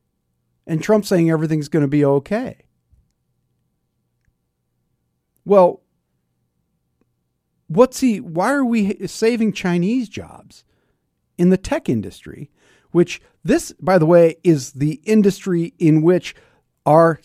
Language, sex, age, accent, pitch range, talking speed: English, male, 50-69, American, 105-175 Hz, 110 wpm